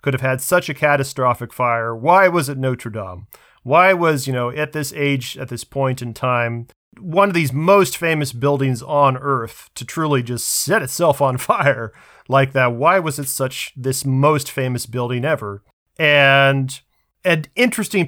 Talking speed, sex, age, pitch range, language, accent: 175 wpm, male, 40-59, 125-150 Hz, English, American